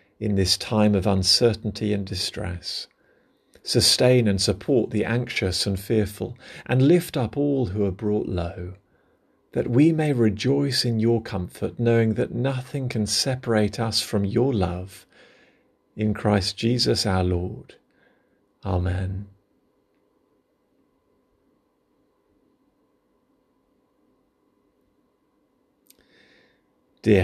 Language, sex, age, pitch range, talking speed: English, male, 50-69, 100-120 Hz, 100 wpm